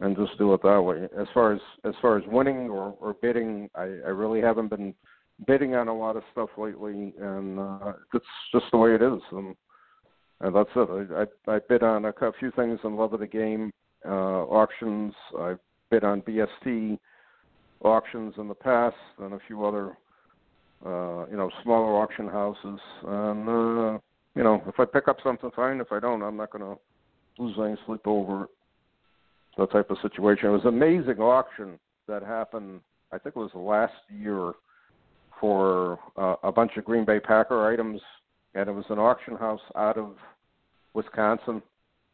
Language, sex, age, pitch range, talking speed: English, male, 60-79, 100-115 Hz, 185 wpm